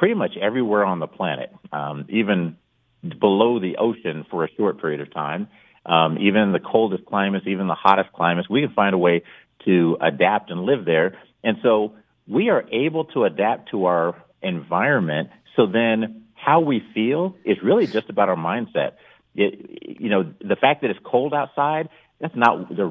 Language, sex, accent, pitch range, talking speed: English, male, American, 90-120 Hz, 185 wpm